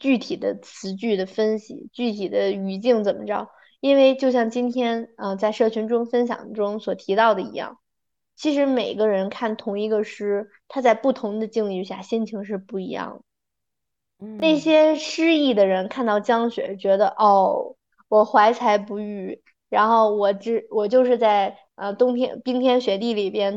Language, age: Chinese, 20-39